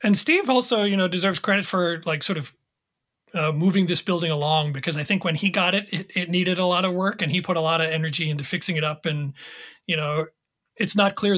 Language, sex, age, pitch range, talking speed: English, male, 40-59, 160-195 Hz, 250 wpm